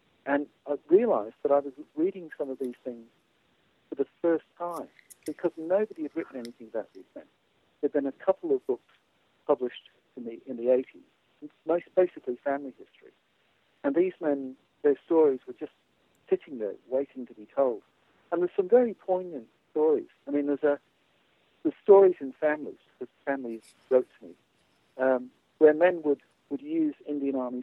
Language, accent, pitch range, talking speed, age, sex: English, British, 125-210 Hz, 175 wpm, 60-79, male